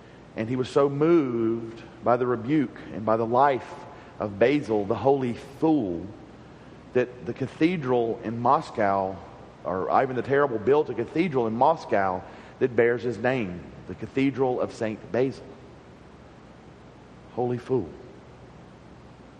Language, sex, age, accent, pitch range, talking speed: English, male, 40-59, American, 115-145 Hz, 130 wpm